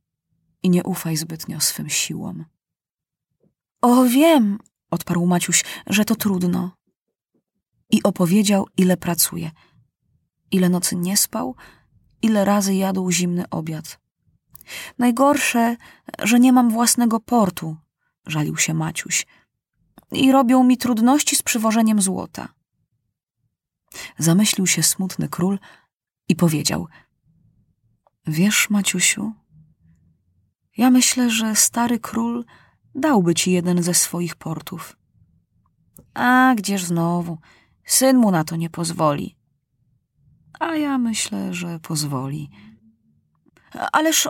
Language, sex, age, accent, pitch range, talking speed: Polish, female, 20-39, native, 165-245 Hz, 105 wpm